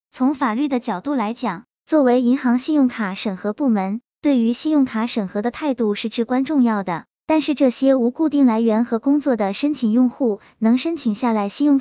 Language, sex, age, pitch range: Chinese, male, 20-39, 215-270 Hz